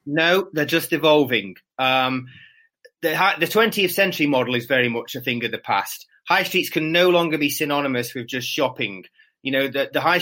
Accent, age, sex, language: British, 30-49, male, English